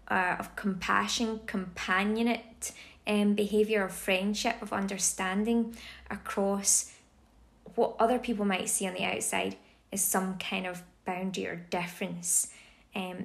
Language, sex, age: English, female, 20-39